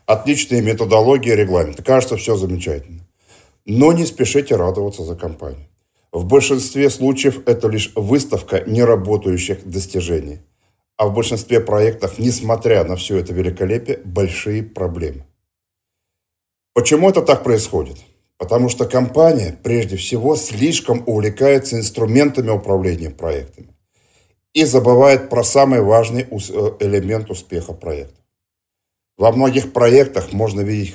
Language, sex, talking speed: Russian, male, 115 wpm